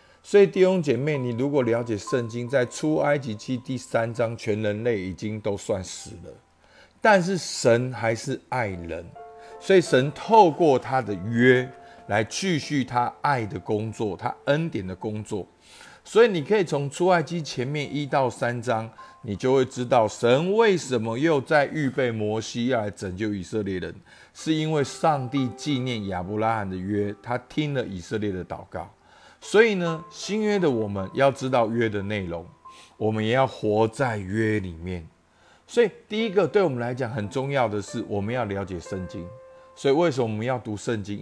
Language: Chinese